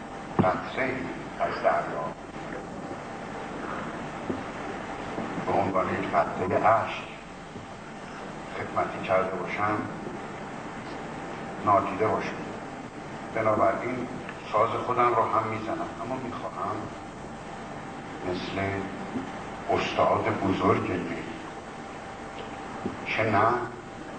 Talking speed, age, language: 45 wpm, 60-79, Persian